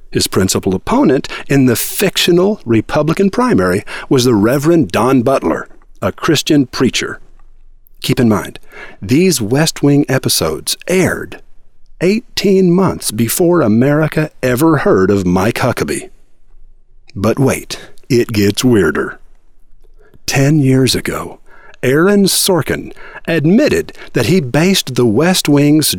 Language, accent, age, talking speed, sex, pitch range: English, American, 50-69, 115 wpm, male, 115-175 Hz